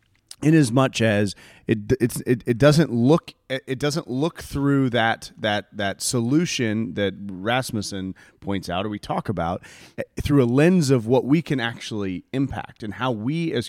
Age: 30-49